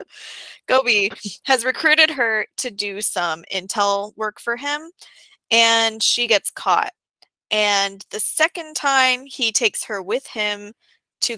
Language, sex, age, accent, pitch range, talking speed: English, female, 20-39, American, 200-245 Hz, 130 wpm